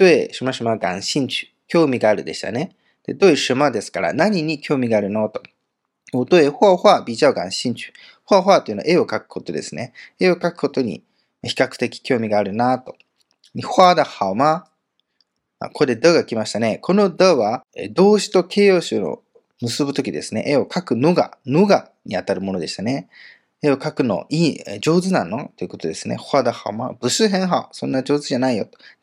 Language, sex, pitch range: Japanese, male, 120-185 Hz